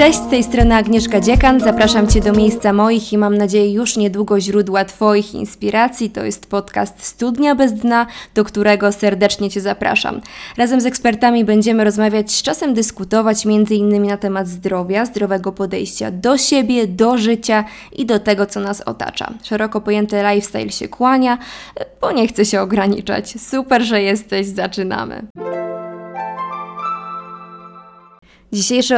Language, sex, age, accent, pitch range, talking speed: Polish, female, 20-39, native, 205-230 Hz, 145 wpm